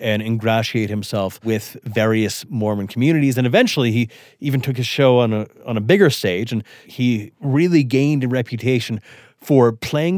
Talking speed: 165 wpm